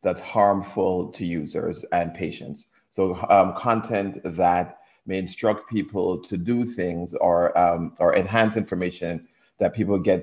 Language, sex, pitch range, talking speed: English, male, 90-105 Hz, 135 wpm